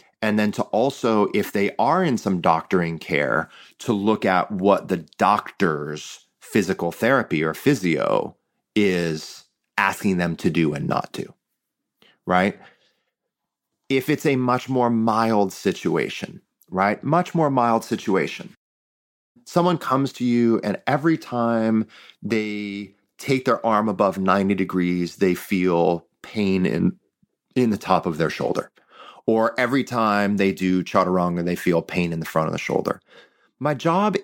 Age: 30-49